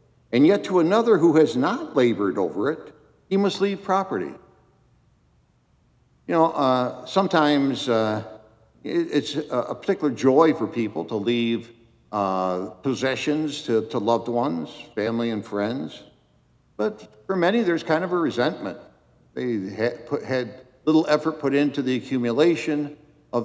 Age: 60-79